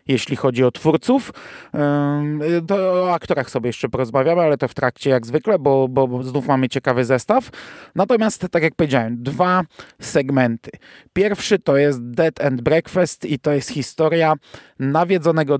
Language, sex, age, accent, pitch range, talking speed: Polish, male, 30-49, native, 130-160 Hz, 150 wpm